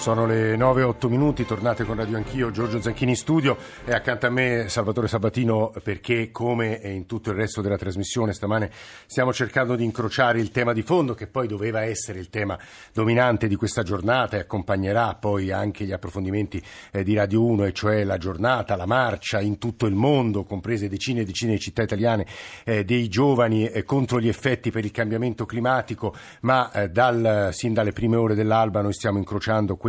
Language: Italian